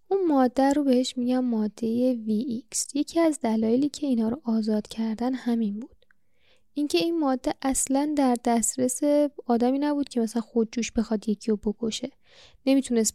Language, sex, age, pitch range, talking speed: Persian, female, 10-29, 225-280 Hz, 150 wpm